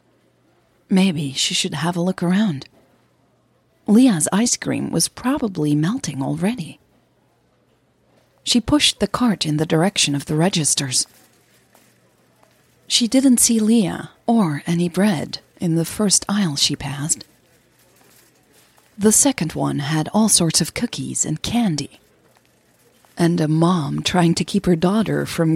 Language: English